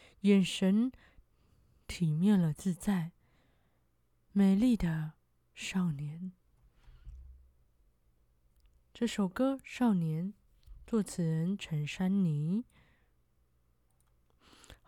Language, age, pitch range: Chinese, 20-39, 165-215 Hz